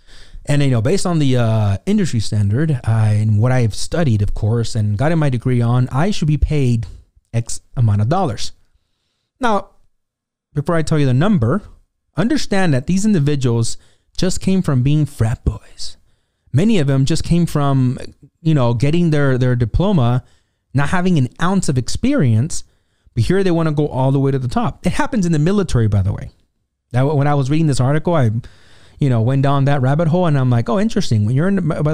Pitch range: 115-160 Hz